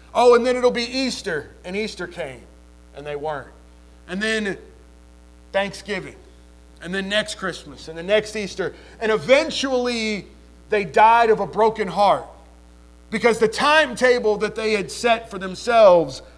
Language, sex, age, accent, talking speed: English, male, 40-59, American, 145 wpm